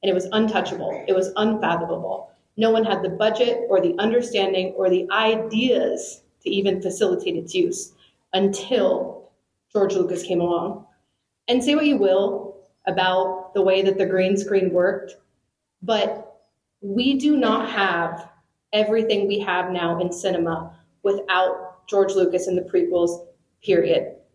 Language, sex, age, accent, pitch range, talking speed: English, female, 30-49, American, 185-235 Hz, 145 wpm